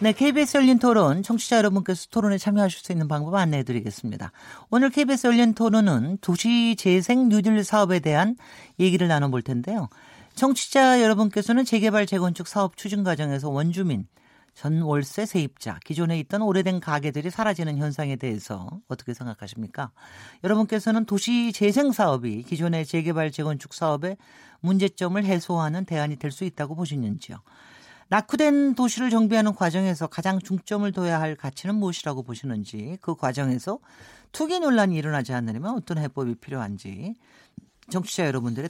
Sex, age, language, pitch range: male, 40-59, Korean, 150-225 Hz